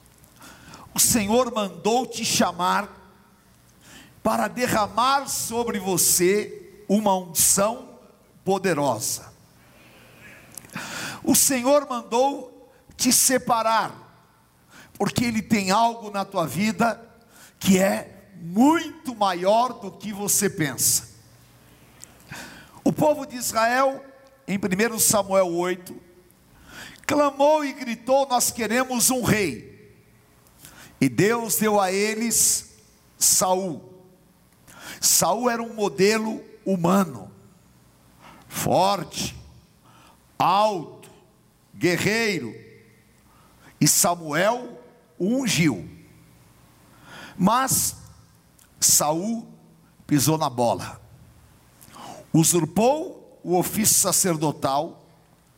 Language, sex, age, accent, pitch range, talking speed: Portuguese, male, 50-69, Brazilian, 175-240 Hz, 80 wpm